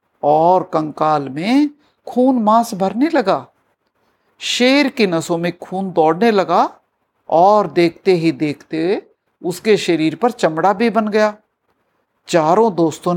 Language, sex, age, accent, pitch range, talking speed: Hindi, male, 60-79, native, 175-245 Hz, 125 wpm